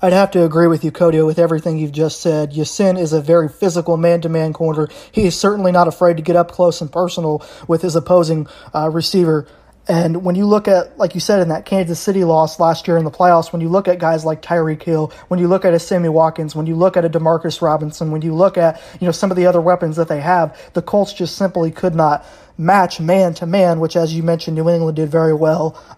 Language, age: English, 20-39